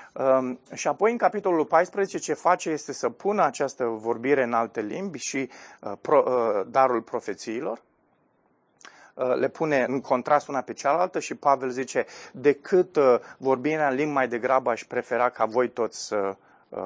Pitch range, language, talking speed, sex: 130-170 Hz, Romanian, 165 wpm, male